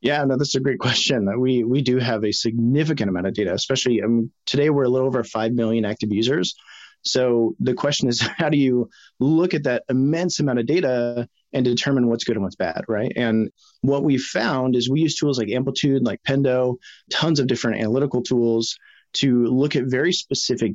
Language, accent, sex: English, American, male